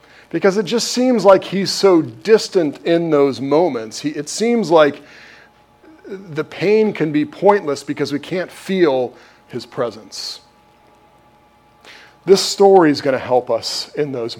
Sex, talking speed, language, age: male, 140 wpm, English, 40-59